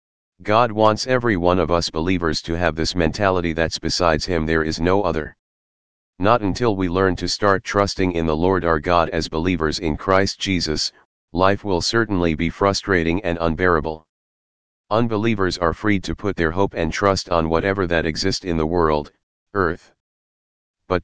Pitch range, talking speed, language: 80-95 Hz, 170 wpm, English